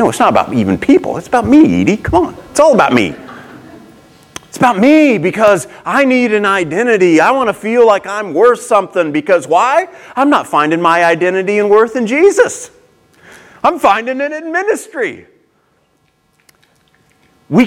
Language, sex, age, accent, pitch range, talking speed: English, male, 40-59, American, 175-260 Hz, 165 wpm